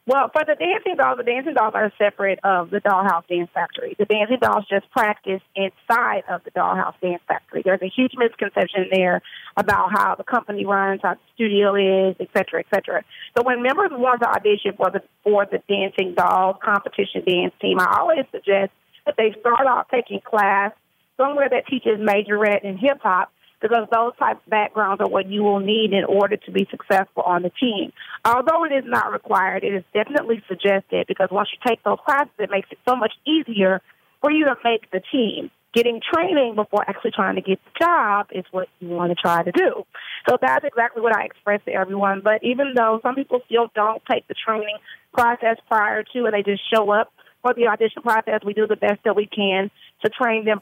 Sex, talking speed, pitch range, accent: female, 210 wpm, 195-240 Hz, American